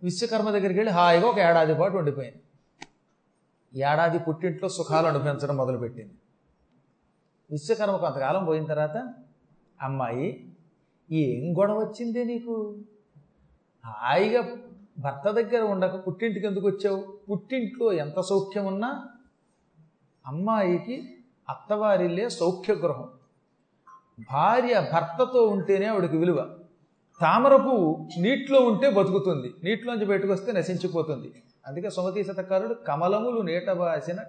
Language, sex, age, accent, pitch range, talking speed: Telugu, male, 40-59, native, 160-220 Hz, 95 wpm